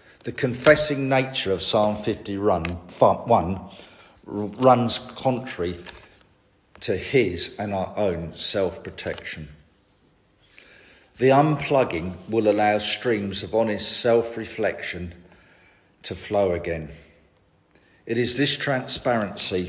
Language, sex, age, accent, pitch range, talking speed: English, male, 50-69, British, 90-120 Hz, 90 wpm